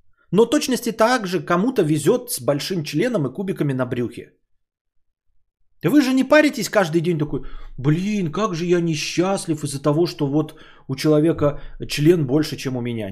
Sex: male